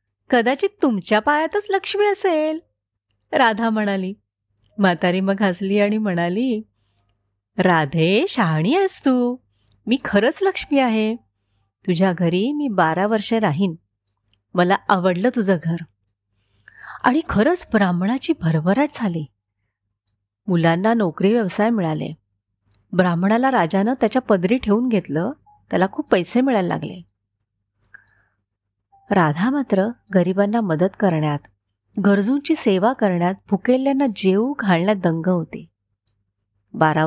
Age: 30-49